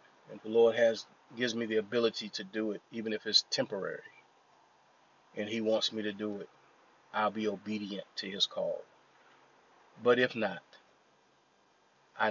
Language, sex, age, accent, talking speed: English, male, 30-49, American, 155 wpm